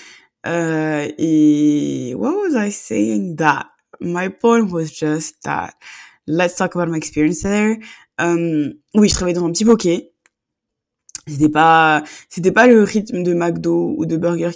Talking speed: 155 wpm